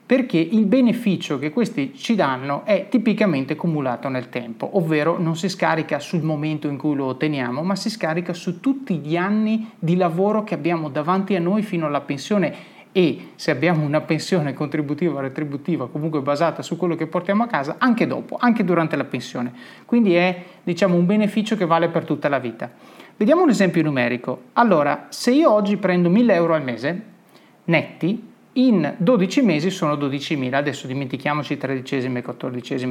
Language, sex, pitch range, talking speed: Italian, male, 150-205 Hz, 175 wpm